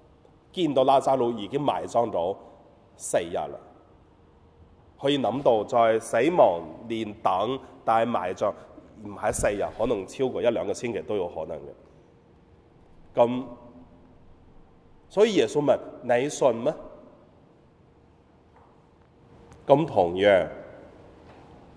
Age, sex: 30-49, male